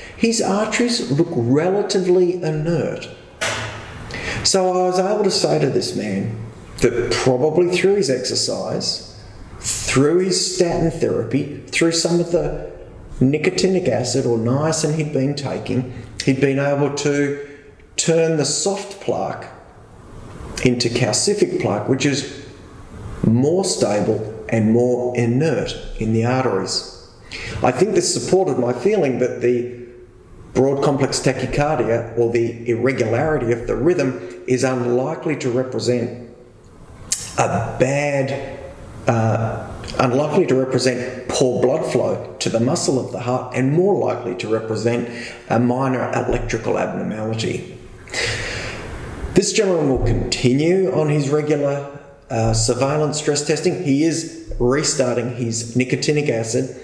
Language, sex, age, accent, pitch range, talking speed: English, male, 40-59, Australian, 120-150 Hz, 125 wpm